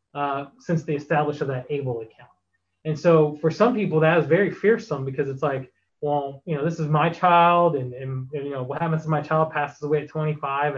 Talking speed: 230 wpm